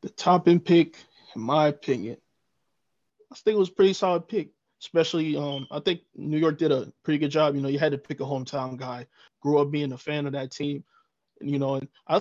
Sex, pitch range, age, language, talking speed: male, 140-160 Hz, 20-39, English, 235 wpm